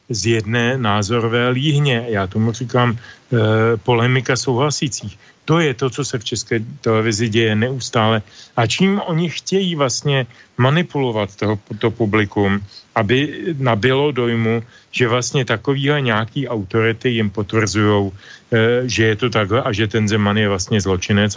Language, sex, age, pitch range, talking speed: Slovak, male, 40-59, 110-135 Hz, 140 wpm